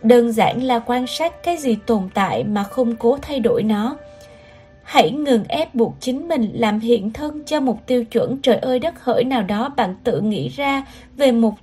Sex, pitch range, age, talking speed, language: female, 225-270 Hz, 20-39, 205 wpm, Vietnamese